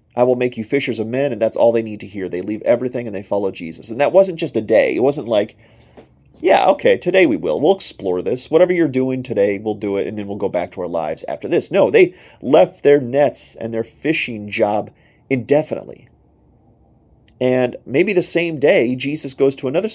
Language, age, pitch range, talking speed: English, 30-49, 105-145 Hz, 225 wpm